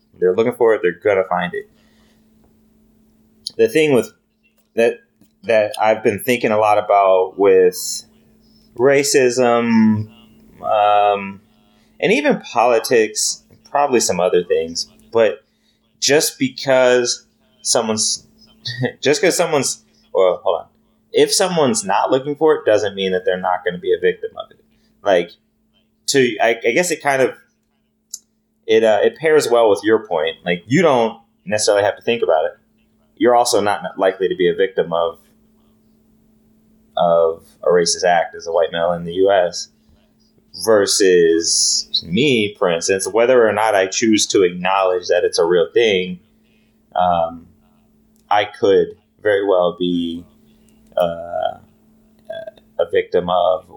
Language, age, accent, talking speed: English, 30-49, American, 145 wpm